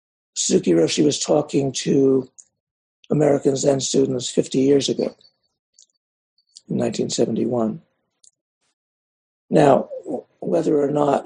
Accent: American